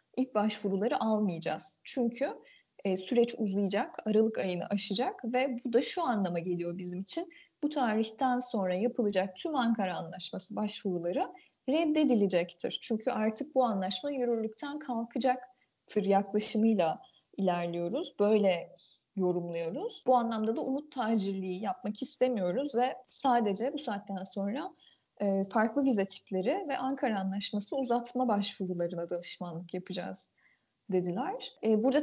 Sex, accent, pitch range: female, native, 195-255 Hz